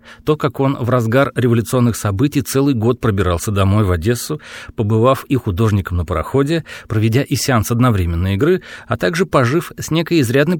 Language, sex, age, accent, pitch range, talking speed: Russian, male, 40-59, native, 100-140 Hz, 165 wpm